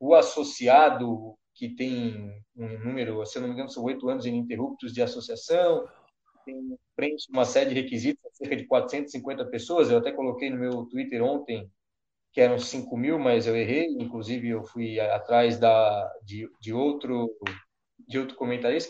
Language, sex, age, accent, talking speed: Portuguese, male, 20-39, Brazilian, 160 wpm